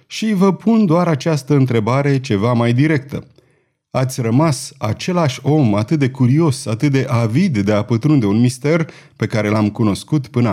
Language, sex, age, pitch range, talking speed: Romanian, male, 30-49, 115-170 Hz, 165 wpm